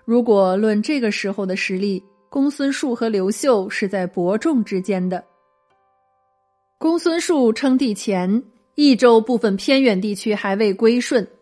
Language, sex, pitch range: Chinese, female, 195-245 Hz